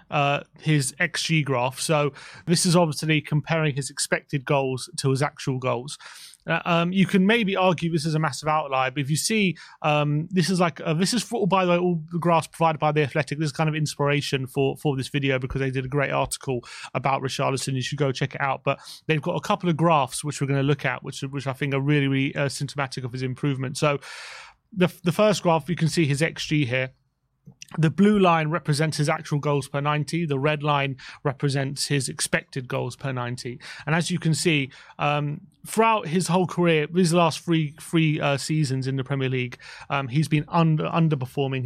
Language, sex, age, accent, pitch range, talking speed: English, male, 30-49, British, 140-165 Hz, 220 wpm